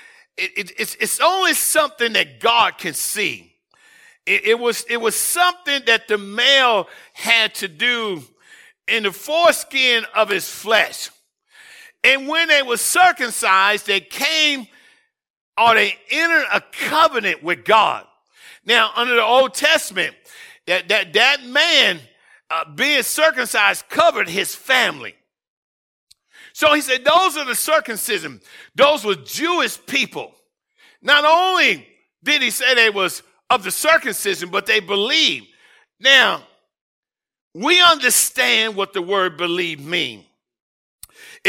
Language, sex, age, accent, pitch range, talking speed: English, male, 50-69, American, 220-345 Hz, 130 wpm